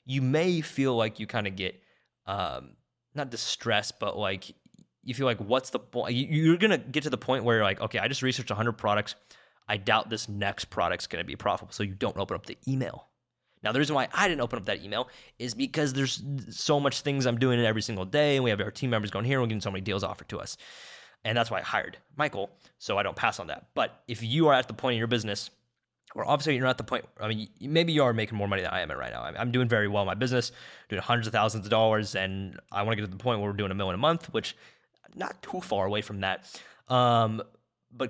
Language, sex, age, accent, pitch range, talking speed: English, male, 20-39, American, 105-130 Hz, 265 wpm